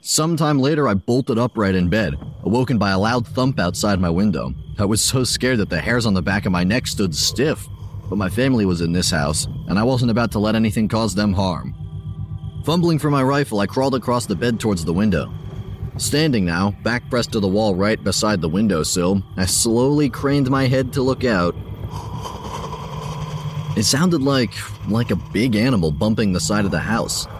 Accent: American